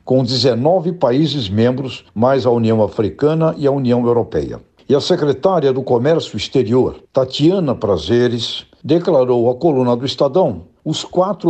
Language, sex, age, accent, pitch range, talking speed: Portuguese, male, 60-79, Brazilian, 120-155 Hz, 140 wpm